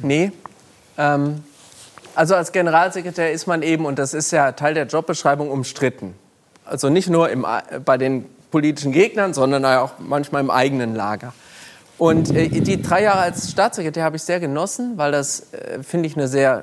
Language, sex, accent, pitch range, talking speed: German, male, German, 135-170 Hz, 175 wpm